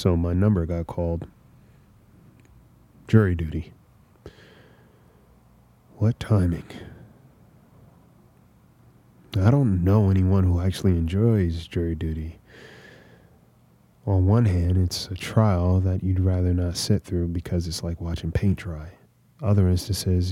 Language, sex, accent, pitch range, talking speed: English, male, American, 90-105 Hz, 110 wpm